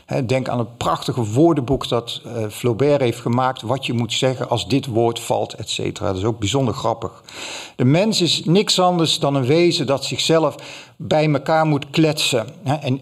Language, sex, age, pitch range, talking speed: Dutch, male, 50-69, 115-150 Hz, 185 wpm